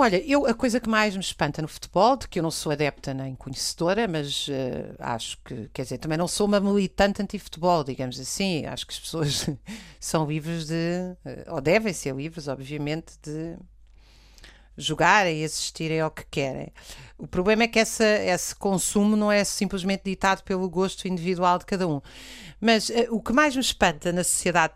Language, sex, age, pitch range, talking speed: Portuguese, female, 50-69, 160-200 Hz, 190 wpm